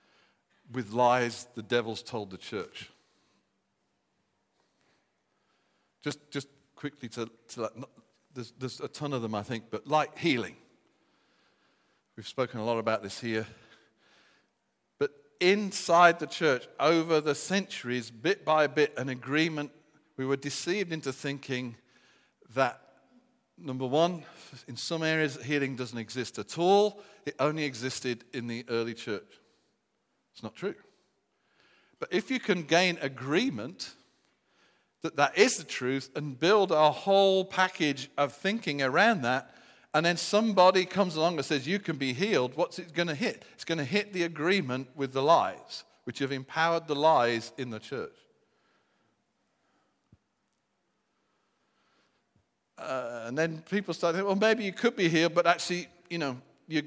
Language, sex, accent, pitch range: English, male, British, 125-170 Hz